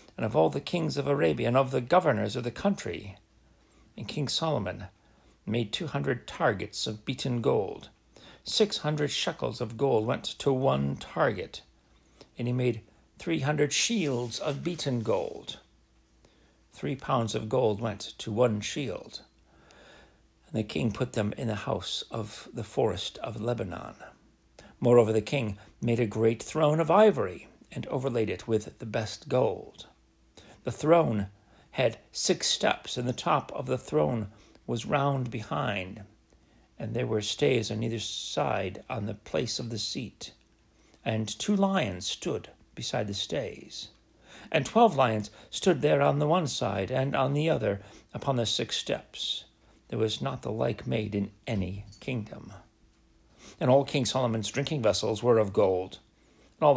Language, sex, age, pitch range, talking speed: English, male, 60-79, 105-140 Hz, 155 wpm